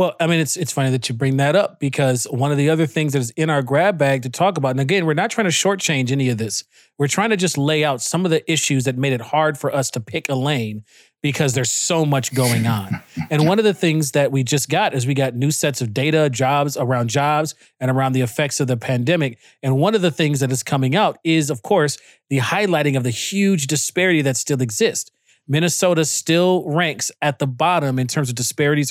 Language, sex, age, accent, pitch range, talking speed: English, male, 30-49, American, 130-160 Hz, 245 wpm